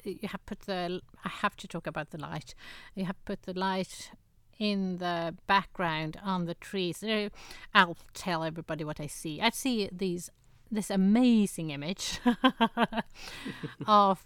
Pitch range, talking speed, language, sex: 170-200 Hz, 145 wpm, English, female